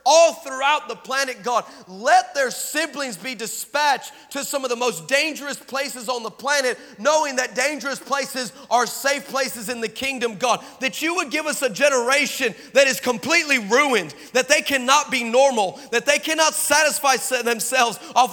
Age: 30-49